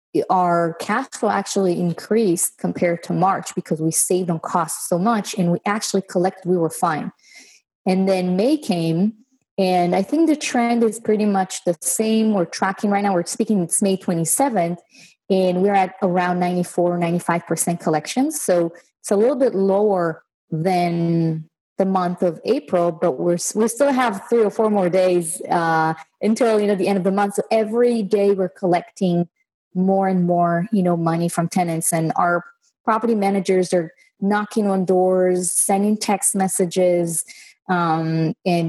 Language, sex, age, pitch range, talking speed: English, female, 30-49, 175-210 Hz, 165 wpm